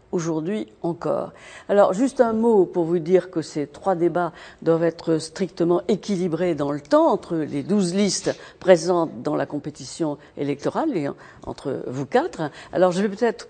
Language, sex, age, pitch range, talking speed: French, female, 50-69, 160-215 Hz, 170 wpm